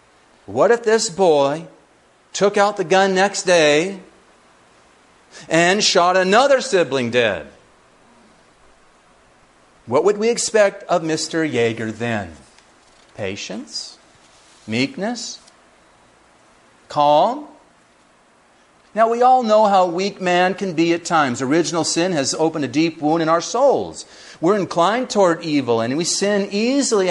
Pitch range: 165-210 Hz